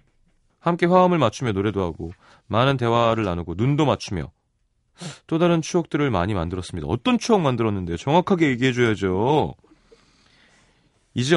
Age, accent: 30-49, native